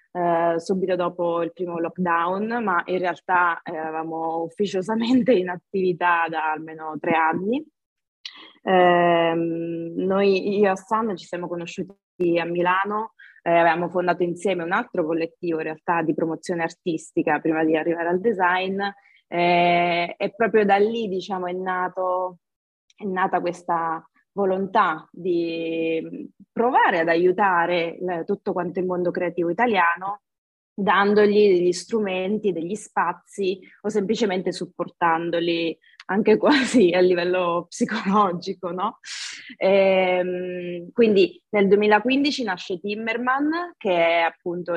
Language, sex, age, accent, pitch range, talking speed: Italian, female, 20-39, native, 170-200 Hz, 120 wpm